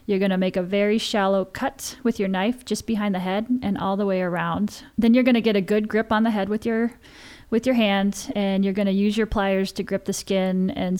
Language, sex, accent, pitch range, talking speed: English, female, American, 190-220 Hz, 260 wpm